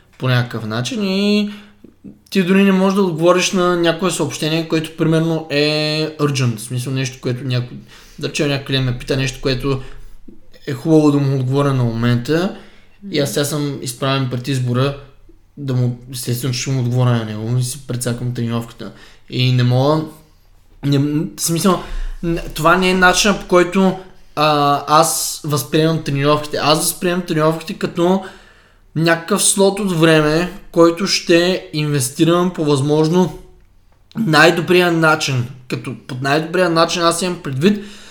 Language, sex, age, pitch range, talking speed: Bulgarian, male, 20-39, 135-185 Hz, 145 wpm